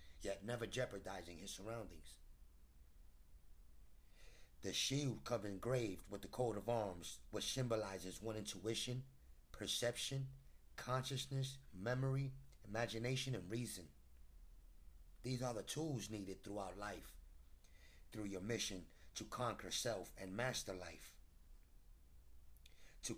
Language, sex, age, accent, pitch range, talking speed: English, male, 30-49, American, 70-115 Hz, 105 wpm